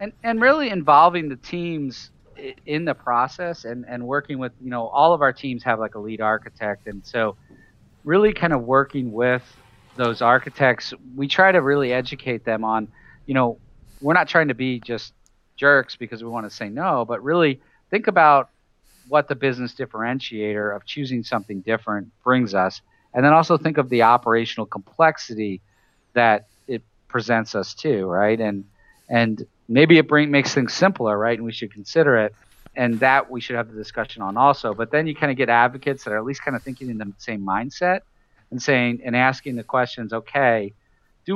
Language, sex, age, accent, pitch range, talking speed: English, male, 40-59, American, 110-140 Hz, 195 wpm